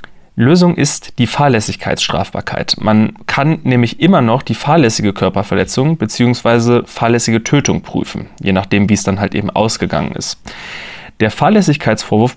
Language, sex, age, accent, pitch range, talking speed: German, male, 30-49, German, 105-135 Hz, 130 wpm